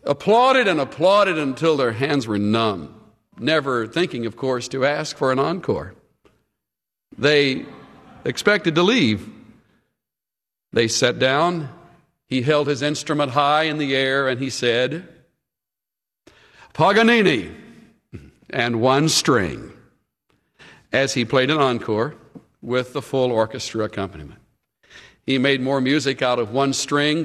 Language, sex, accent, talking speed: English, male, American, 125 wpm